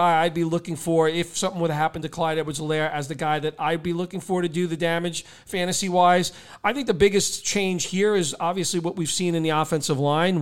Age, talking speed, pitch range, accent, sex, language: 40-59, 230 wpm, 160-195 Hz, American, male, English